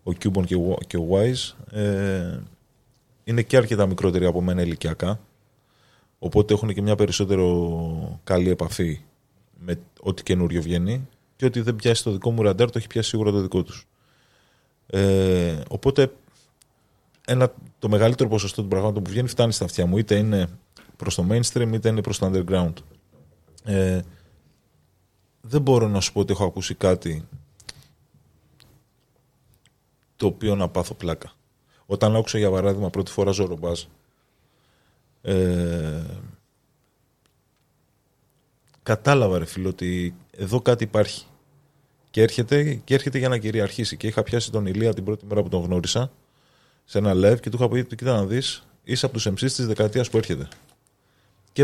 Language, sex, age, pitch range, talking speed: Greek, male, 20-39, 90-125 Hz, 145 wpm